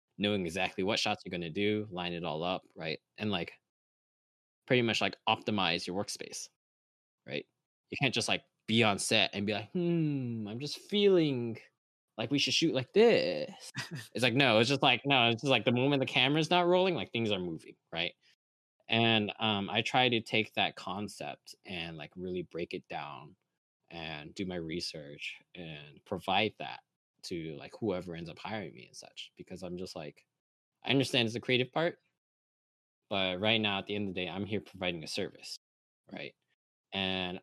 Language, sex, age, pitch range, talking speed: English, male, 20-39, 90-120 Hz, 190 wpm